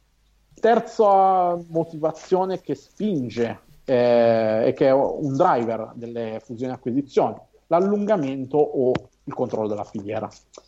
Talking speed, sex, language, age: 105 wpm, male, Italian, 50-69